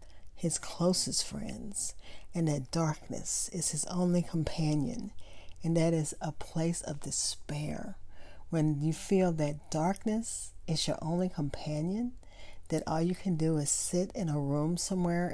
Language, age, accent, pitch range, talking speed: English, 40-59, American, 145-175 Hz, 145 wpm